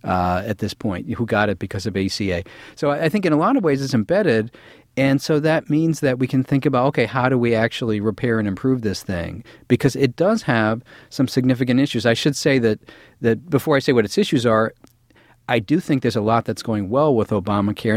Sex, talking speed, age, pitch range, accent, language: male, 235 wpm, 40-59, 110-135 Hz, American, English